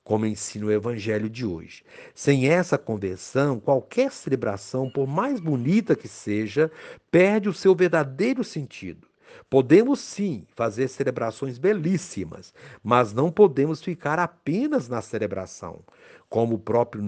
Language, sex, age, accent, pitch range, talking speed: Portuguese, male, 60-79, Brazilian, 110-165 Hz, 125 wpm